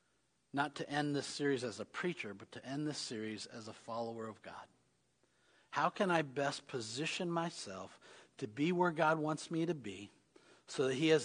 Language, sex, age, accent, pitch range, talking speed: English, male, 50-69, American, 125-165 Hz, 190 wpm